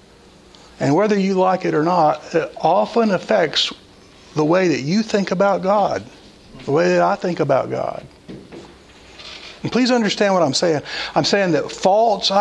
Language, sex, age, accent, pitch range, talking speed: English, male, 60-79, American, 155-210 Hz, 165 wpm